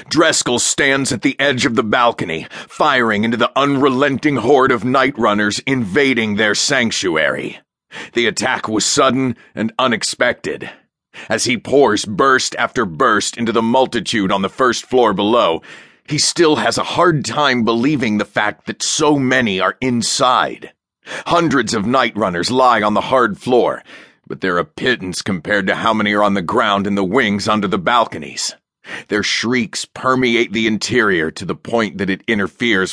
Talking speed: 165 wpm